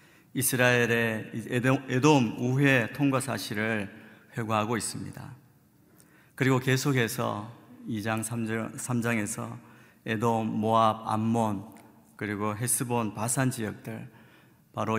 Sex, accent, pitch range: male, native, 110-135 Hz